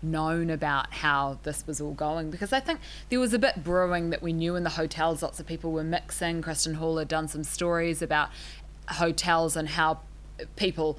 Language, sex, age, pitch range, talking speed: English, female, 20-39, 155-175 Hz, 200 wpm